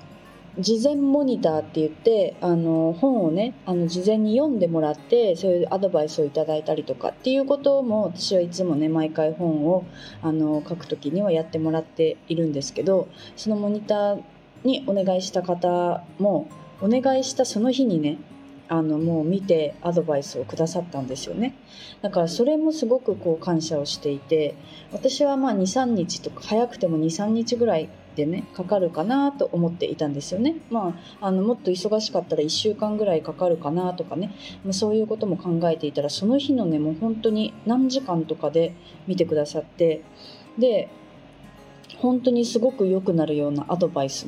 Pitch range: 155-220 Hz